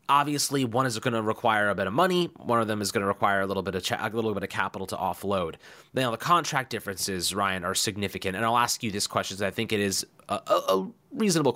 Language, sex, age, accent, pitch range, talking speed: English, male, 30-49, American, 100-135 Hz, 275 wpm